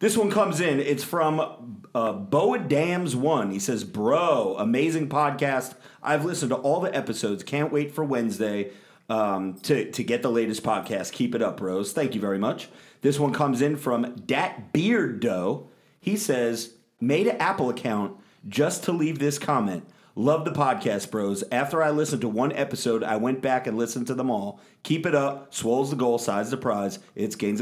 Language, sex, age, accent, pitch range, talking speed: English, male, 40-59, American, 115-160 Hz, 185 wpm